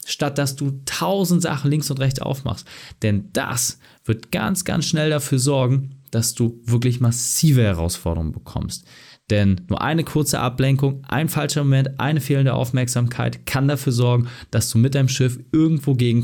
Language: German